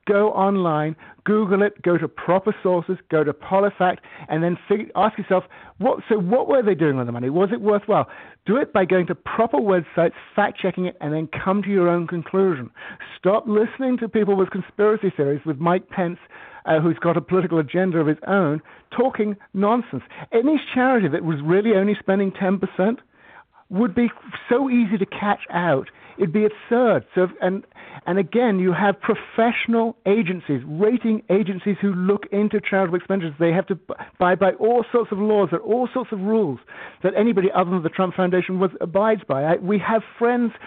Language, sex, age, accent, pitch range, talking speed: English, male, 50-69, British, 180-210 Hz, 185 wpm